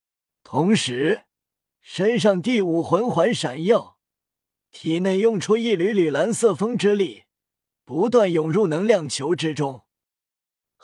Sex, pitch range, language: male, 160-220 Hz, Chinese